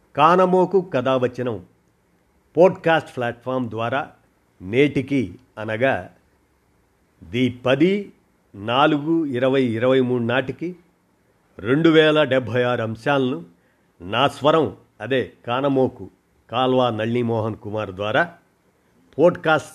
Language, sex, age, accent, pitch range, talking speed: Telugu, male, 50-69, native, 110-140 Hz, 85 wpm